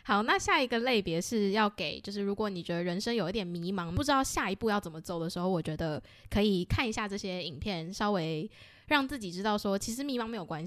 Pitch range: 175-230 Hz